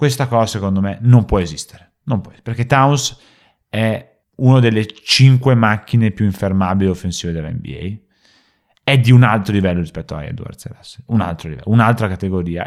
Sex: male